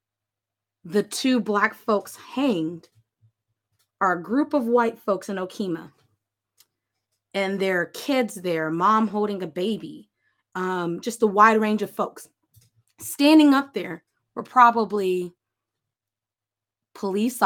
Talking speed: 115 wpm